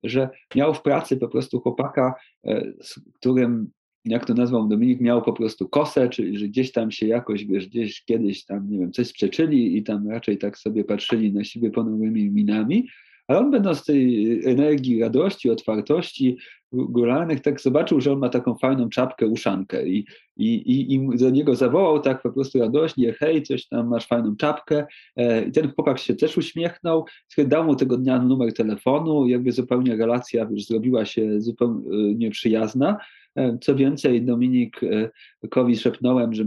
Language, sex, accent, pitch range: Polish, male, native, 110-130 Hz